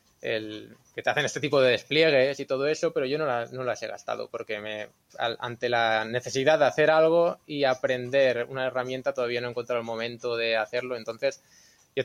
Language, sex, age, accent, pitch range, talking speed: Spanish, male, 20-39, Spanish, 110-125 Hz, 190 wpm